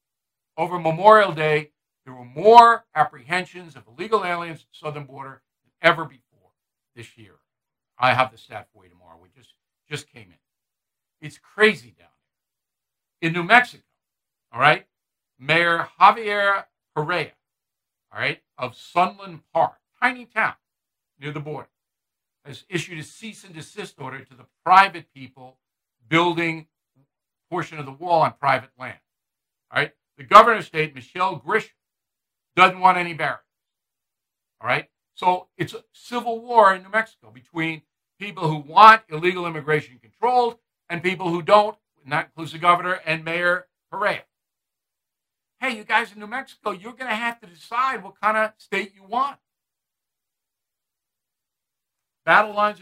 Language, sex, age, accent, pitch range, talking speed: English, male, 60-79, American, 135-200 Hz, 150 wpm